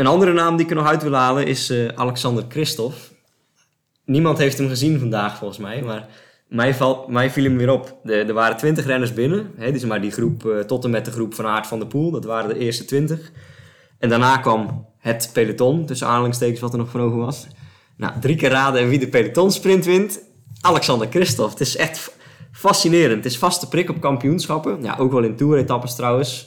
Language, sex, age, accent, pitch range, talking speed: Dutch, male, 20-39, Dutch, 115-150 Hz, 220 wpm